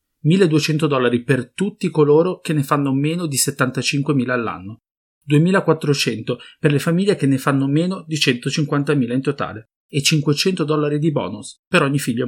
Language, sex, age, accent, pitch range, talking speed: English, male, 30-49, Italian, 125-160 Hz, 150 wpm